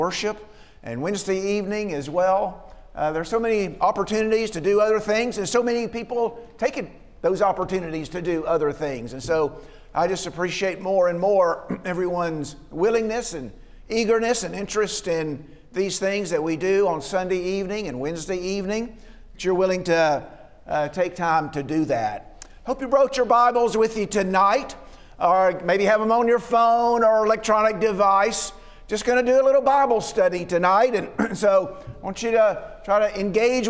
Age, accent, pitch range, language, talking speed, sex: 50-69, American, 185-235 Hz, English, 175 wpm, male